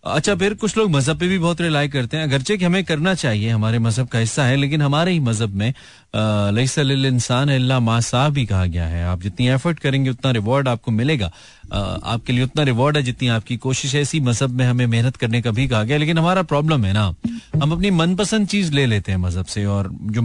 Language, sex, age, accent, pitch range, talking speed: Hindi, male, 30-49, native, 120-170 Hz, 215 wpm